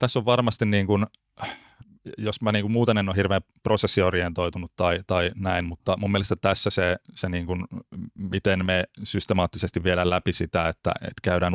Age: 30-49